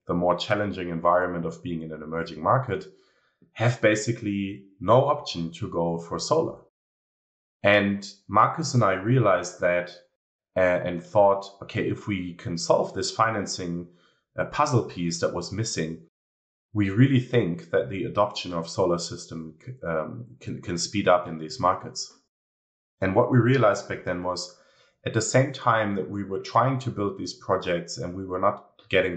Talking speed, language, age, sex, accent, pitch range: 165 wpm, English, 30-49, male, German, 85-105 Hz